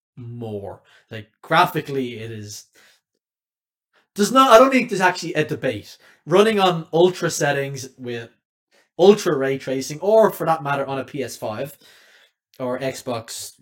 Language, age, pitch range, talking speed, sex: English, 20-39, 120-160 Hz, 140 wpm, male